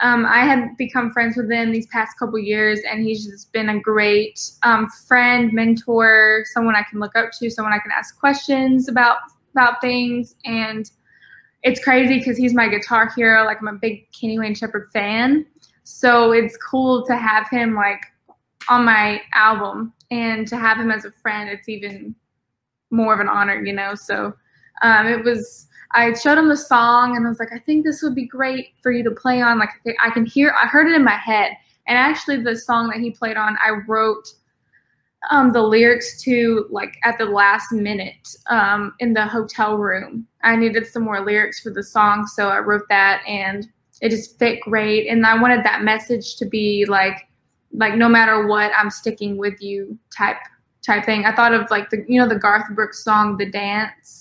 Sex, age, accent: female, 10-29, American